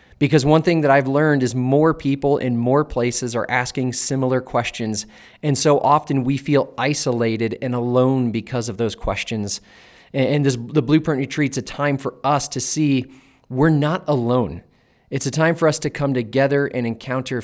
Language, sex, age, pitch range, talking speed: English, male, 30-49, 120-140 Hz, 175 wpm